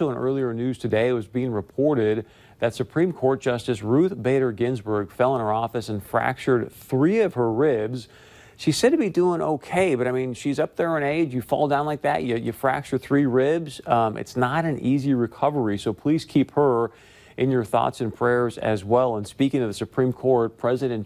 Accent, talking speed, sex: American, 210 wpm, male